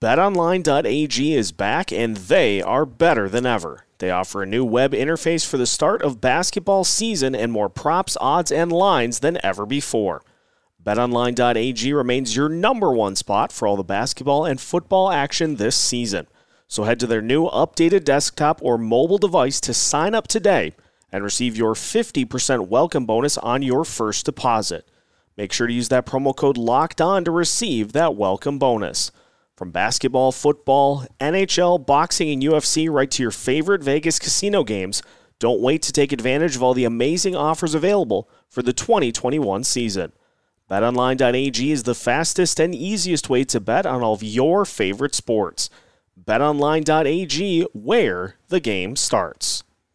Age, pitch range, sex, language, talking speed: 30-49, 115-155 Hz, male, English, 155 wpm